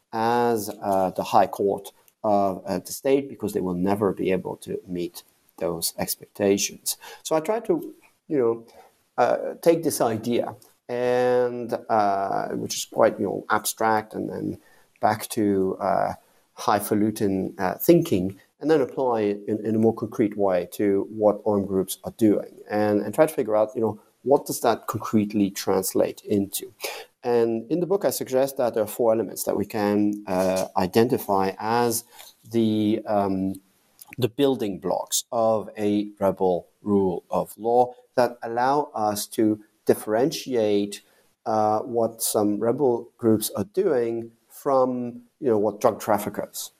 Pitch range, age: 100-115 Hz, 40-59